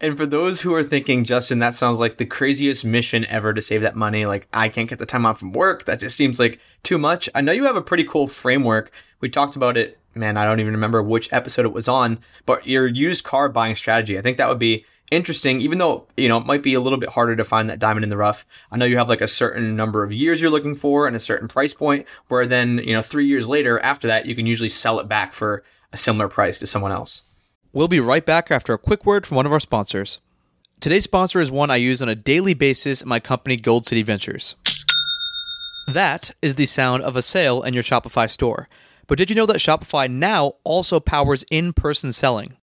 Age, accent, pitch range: 20-39, American, 115-150 Hz